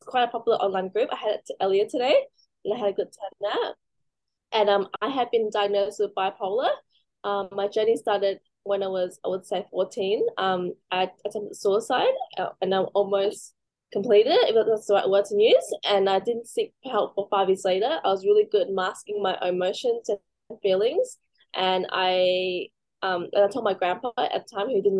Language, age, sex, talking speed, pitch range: English, 10-29, female, 200 wpm, 190-230 Hz